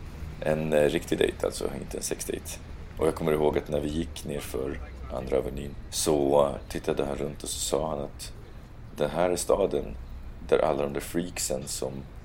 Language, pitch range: Swedish, 70-80 Hz